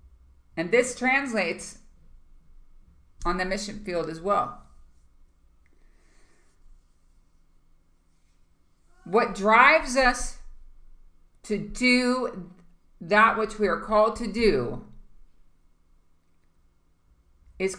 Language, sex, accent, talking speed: English, female, American, 75 wpm